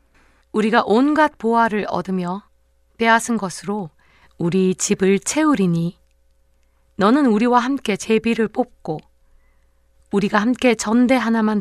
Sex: female